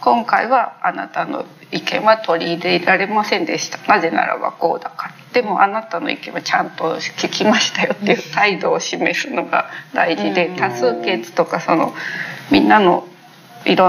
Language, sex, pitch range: Japanese, female, 170-215 Hz